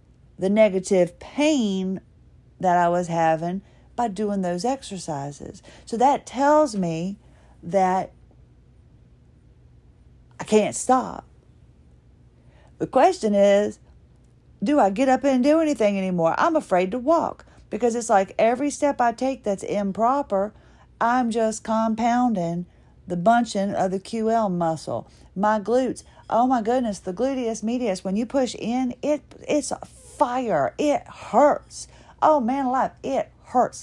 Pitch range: 175-245 Hz